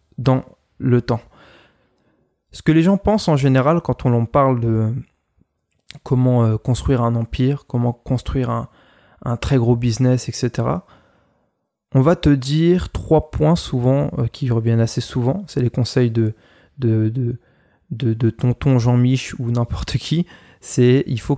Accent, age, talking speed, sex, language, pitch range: French, 20-39, 160 wpm, male, French, 115-135 Hz